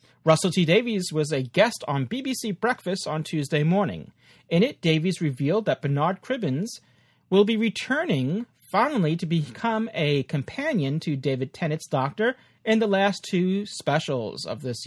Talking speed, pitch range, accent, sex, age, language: 155 wpm, 140-210 Hz, American, male, 40-59, English